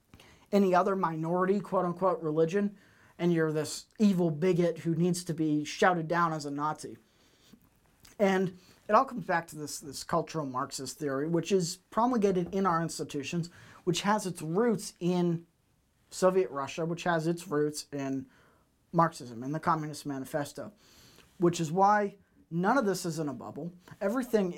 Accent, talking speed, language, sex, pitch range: American, 155 wpm, English, male, 145-180 Hz